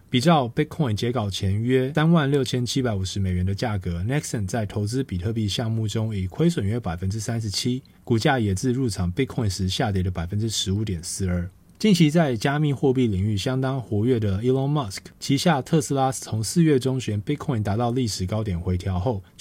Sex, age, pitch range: male, 20-39, 95-135 Hz